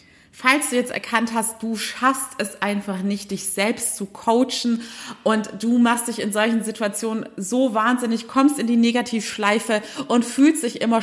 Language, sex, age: German, female, 30-49